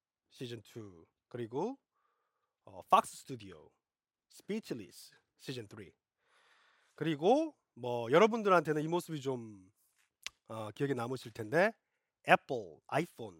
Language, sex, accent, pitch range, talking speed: English, male, Korean, 115-185 Hz, 80 wpm